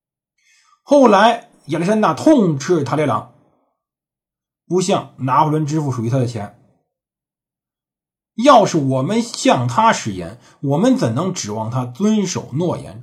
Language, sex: Chinese, male